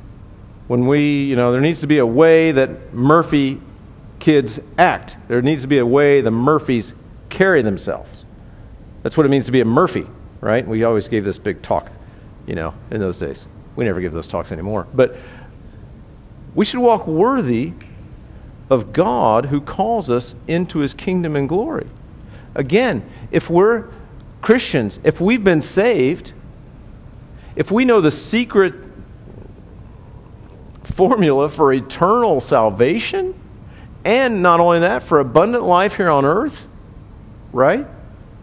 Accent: American